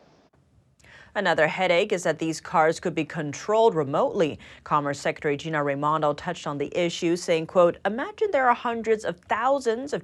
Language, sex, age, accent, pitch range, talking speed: English, female, 30-49, American, 155-230 Hz, 160 wpm